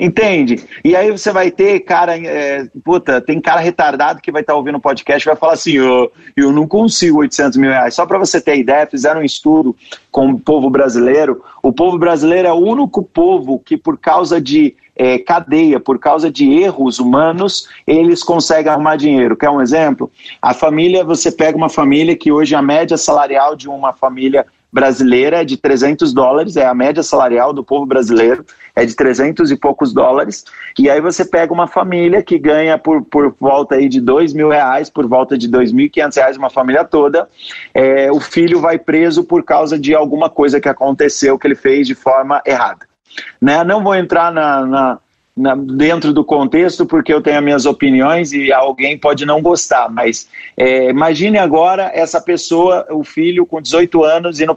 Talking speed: 185 wpm